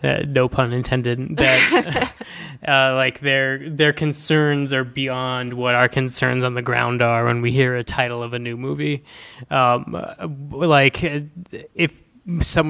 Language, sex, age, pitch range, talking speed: English, male, 20-39, 125-145 Hz, 150 wpm